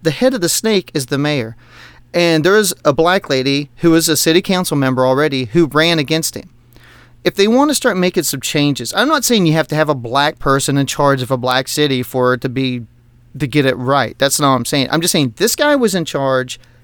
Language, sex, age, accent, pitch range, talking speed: English, male, 30-49, American, 130-175 Hz, 250 wpm